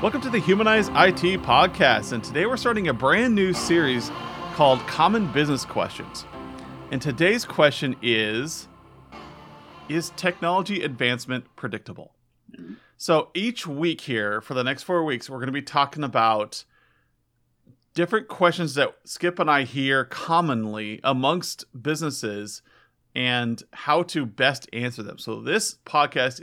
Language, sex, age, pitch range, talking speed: English, male, 40-59, 120-165 Hz, 135 wpm